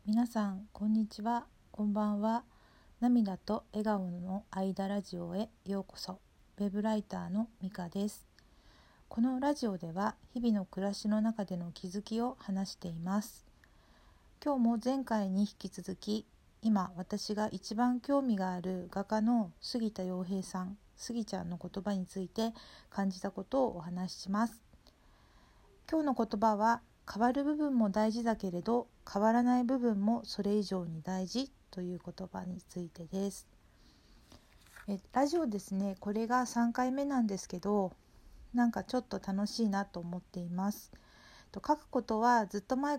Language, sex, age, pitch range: Japanese, female, 50-69, 190-230 Hz